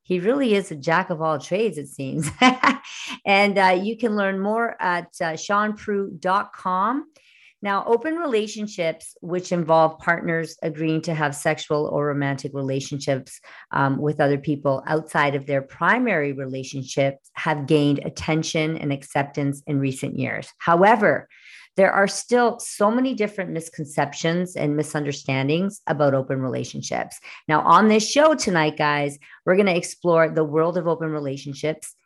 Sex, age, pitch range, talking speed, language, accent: female, 40-59, 145-200 Hz, 145 wpm, English, American